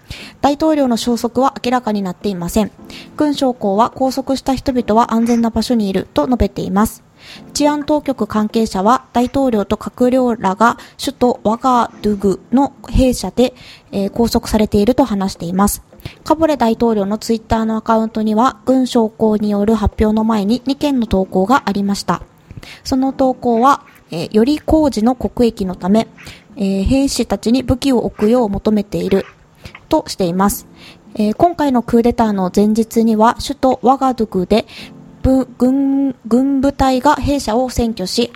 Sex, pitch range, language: female, 210-265 Hz, Japanese